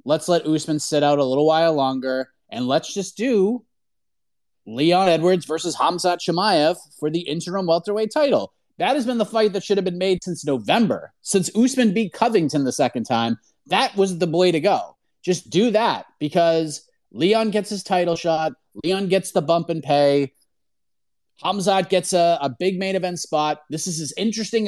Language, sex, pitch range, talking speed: English, male, 150-195 Hz, 180 wpm